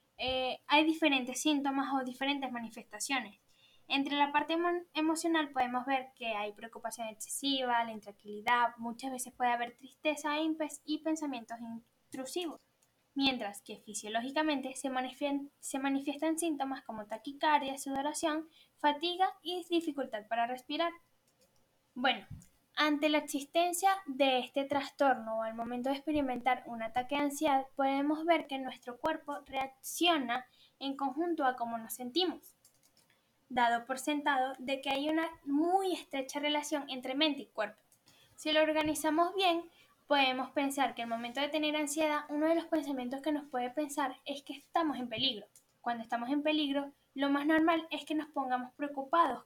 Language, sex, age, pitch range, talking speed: Spanish, female, 10-29, 250-310 Hz, 145 wpm